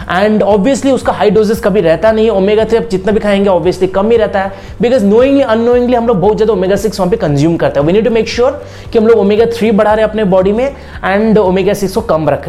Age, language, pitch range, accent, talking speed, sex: 30-49, Hindi, 185-230 Hz, native, 265 wpm, male